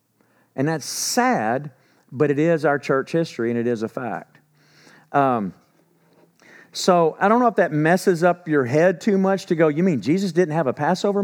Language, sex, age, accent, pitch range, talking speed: English, male, 50-69, American, 160-210 Hz, 190 wpm